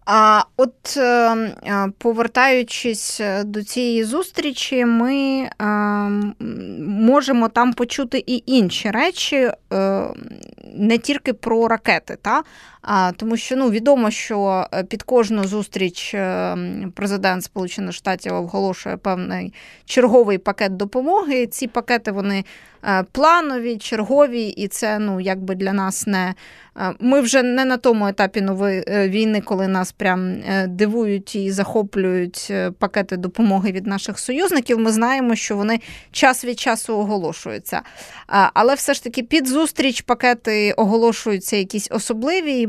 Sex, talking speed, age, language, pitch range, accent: female, 120 wpm, 20-39, Ukrainian, 195-245 Hz, native